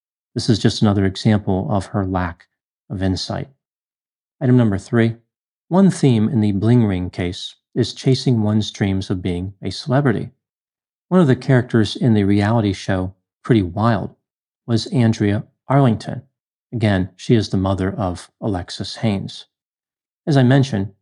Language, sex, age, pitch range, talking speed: English, male, 40-59, 100-120 Hz, 150 wpm